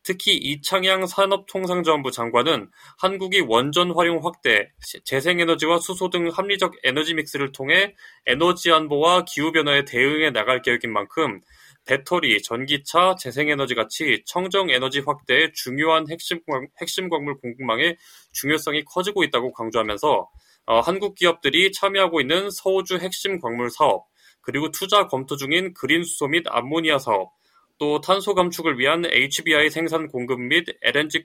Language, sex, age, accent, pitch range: Korean, male, 20-39, native, 140-185 Hz